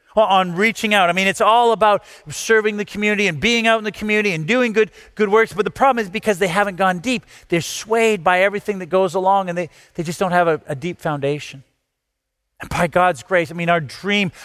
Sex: male